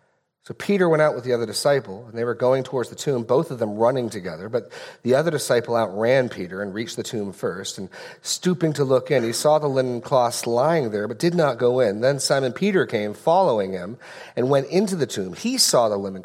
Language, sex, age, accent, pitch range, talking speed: English, male, 40-59, American, 115-145 Hz, 235 wpm